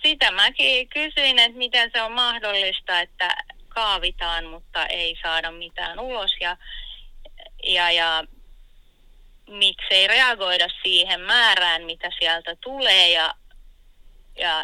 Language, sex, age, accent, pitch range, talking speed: Finnish, female, 30-49, native, 170-220 Hz, 110 wpm